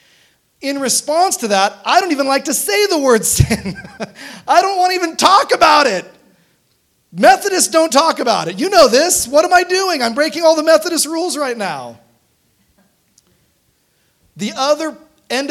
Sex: male